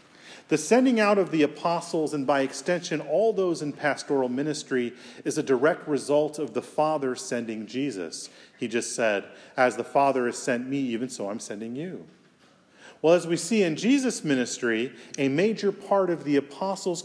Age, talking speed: 40-59, 175 wpm